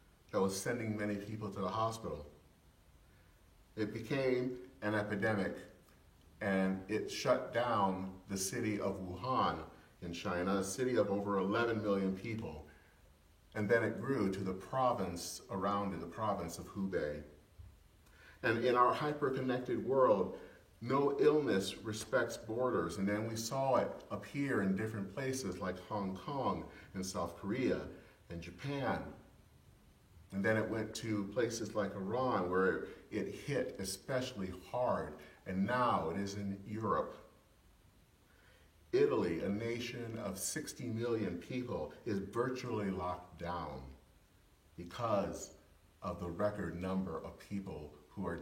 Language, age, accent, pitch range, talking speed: English, 40-59, American, 85-110 Hz, 135 wpm